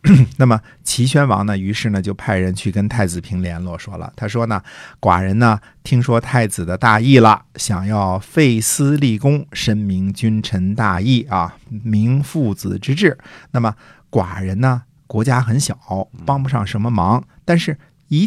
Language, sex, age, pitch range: Chinese, male, 50-69, 95-125 Hz